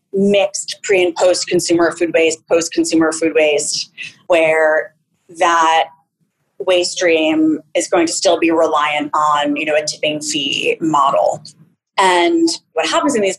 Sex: female